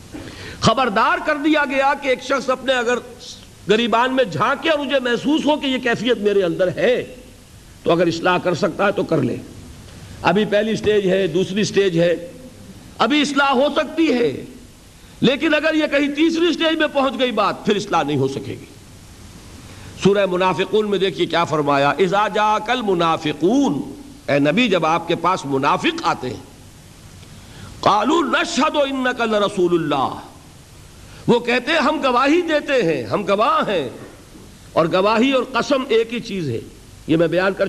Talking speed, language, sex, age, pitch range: 165 wpm, Urdu, male, 50-69, 170-270 Hz